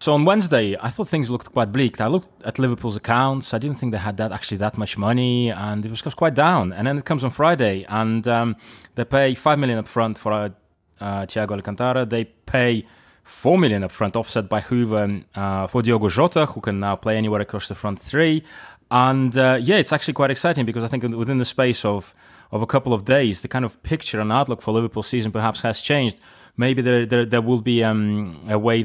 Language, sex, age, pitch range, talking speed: English, male, 20-39, 105-130 Hz, 230 wpm